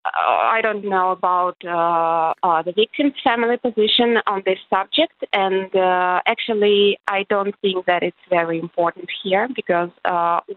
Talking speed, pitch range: 150 wpm, 175-215 Hz